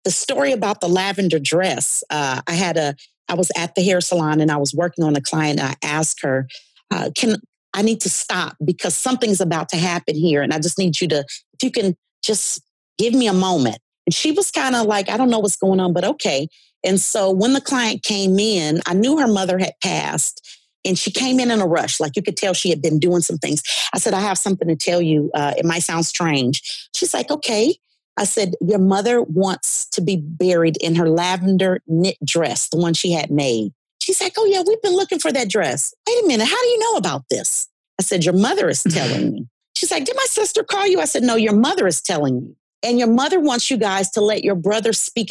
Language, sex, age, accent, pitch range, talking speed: English, female, 40-59, American, 165-235 Hz, 240 wpm